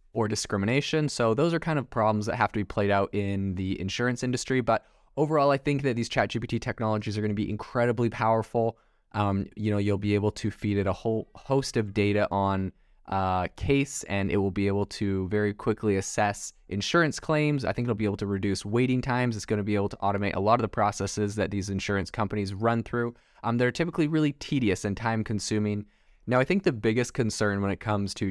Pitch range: 95-115 Hz